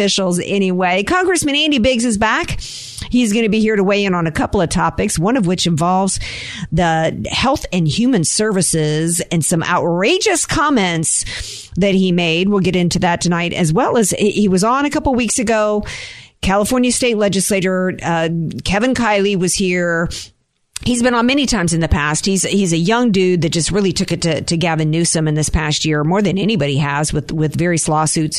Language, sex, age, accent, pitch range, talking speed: English, female, 50-69, American, 160-215 Hz, 195 wpm